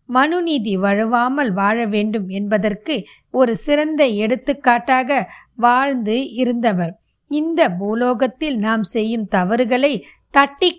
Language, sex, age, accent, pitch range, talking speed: Tamil, female, 20-39, native, 205-280 Hz, 90 wpm